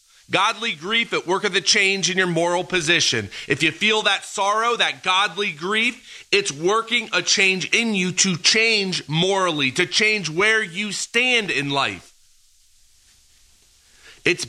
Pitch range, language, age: 150-205 Hz, English, 30-49